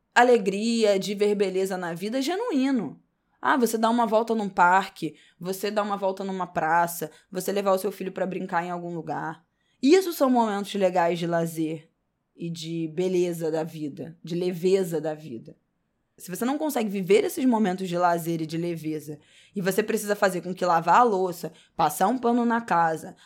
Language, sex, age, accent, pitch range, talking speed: Portuguese, female, 10-29, Brazilian, 165-205 Hz, 185 wpm